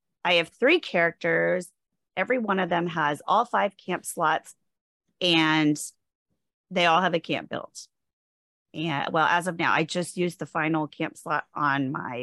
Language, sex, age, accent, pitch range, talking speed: English, female, 30-49, American, 160-220 Hz, 160 wpm